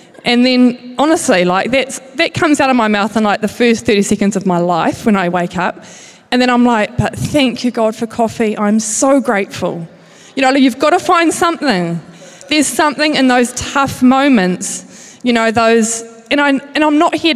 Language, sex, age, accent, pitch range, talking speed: English, female, 20-39, Australian, 195-240 Hz, 205 wpm